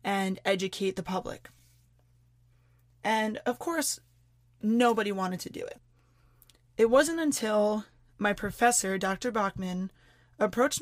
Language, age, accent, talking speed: English, 20-39, American, 110 wpm